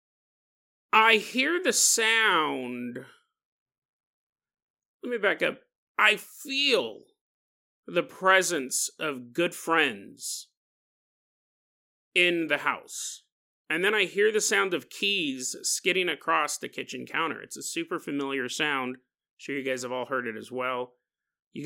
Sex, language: male, English